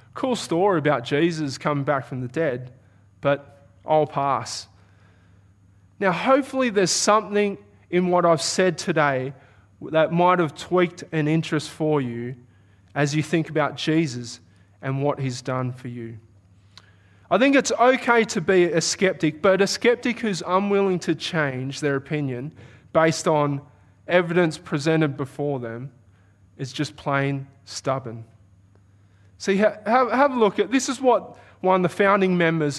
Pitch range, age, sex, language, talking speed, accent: 120-175 Hz, 20-39, male, English, 145 wpm, Australian